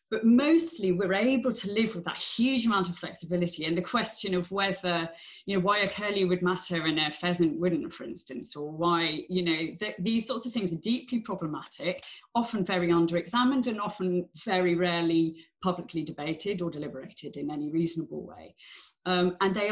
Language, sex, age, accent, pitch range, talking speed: English, female, 30-49, British, 175-230 Hz, 180 wpm